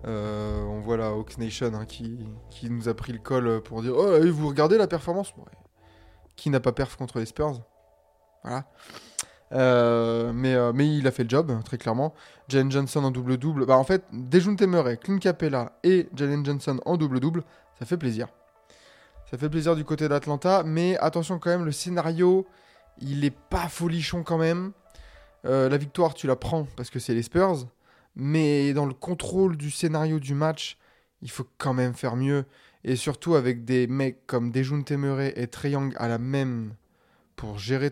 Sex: male